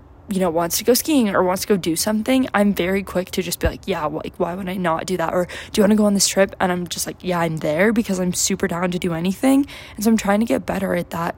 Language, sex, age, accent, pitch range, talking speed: English, female, 20-39, American, 180-200 Hz, 310 wpm